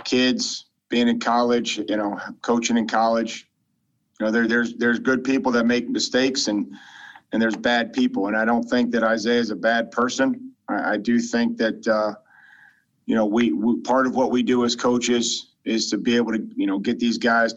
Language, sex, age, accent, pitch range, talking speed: English, male, 40-59, American, 110-120 Hz, 210 wpm